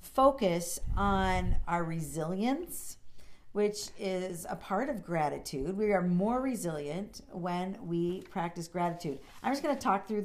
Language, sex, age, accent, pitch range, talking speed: English, female, 50-69, American, 175-235 Hz, 140 wpm